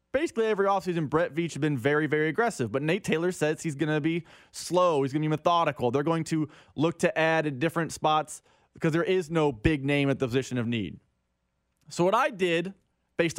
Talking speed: 220 wpm